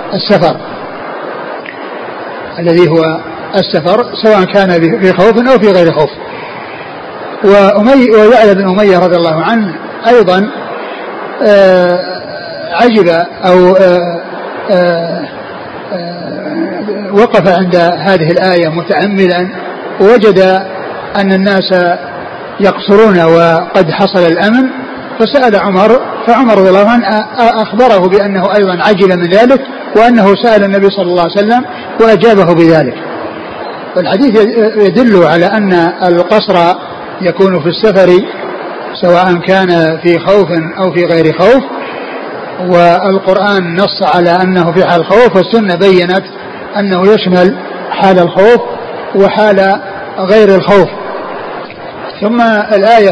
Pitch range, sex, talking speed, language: 175-210 Hz, male, 100 wpm, Arabic